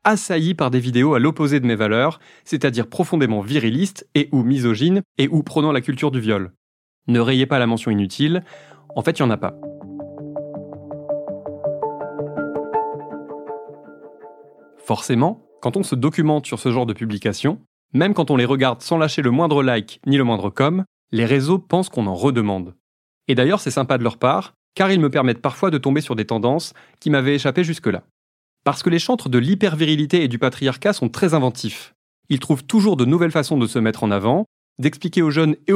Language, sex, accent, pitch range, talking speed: French, male, French, 120-155 Hz, 190 wpm